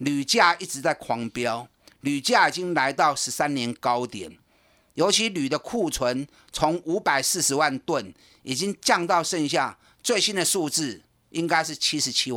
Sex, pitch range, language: male, 125-200 Hz, Chinese